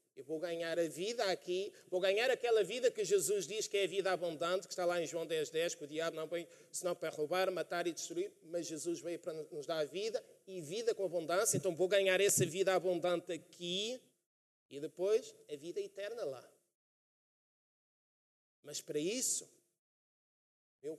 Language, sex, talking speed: Portuguese, male, 190 wpm